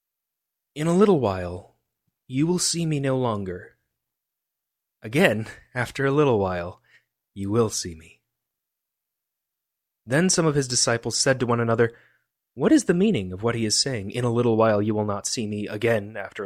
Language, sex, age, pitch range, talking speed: English, male, 20-39, 110-160 Hz, 175 wpm